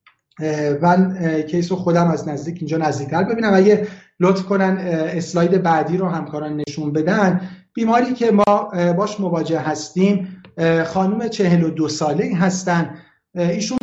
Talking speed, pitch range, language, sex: 130 wpm, 155-195 Hz, Persian, male